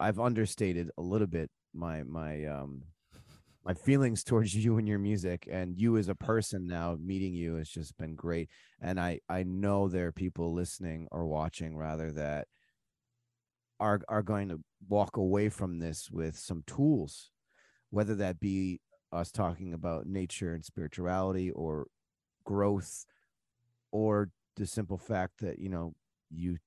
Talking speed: 155 wpm